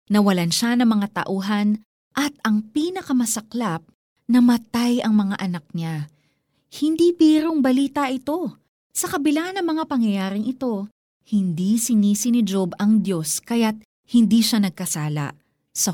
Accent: native